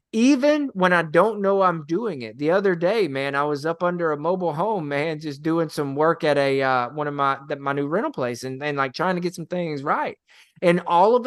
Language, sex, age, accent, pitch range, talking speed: English, male, 20-39, American, 150-215 Hz, 245 wpm